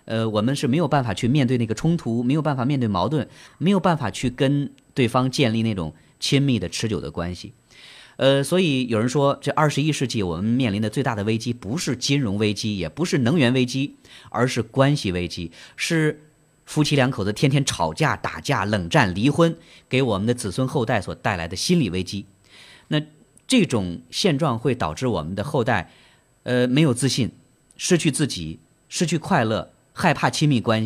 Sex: male